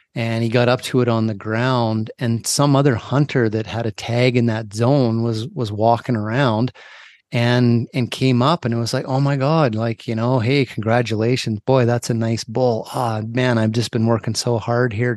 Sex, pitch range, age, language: male, 115-130 Hz, 30-49, English